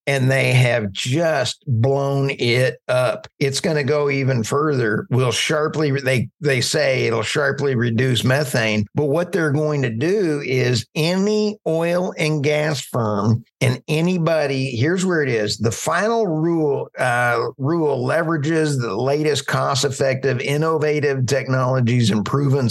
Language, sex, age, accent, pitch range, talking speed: English, male, 50-69, American, 125-160 Hz, 140 wpm